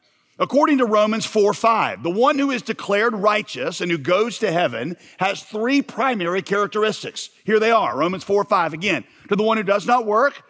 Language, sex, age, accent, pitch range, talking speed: English, male, 40-59, American, 170-210 Hz, 195 wpm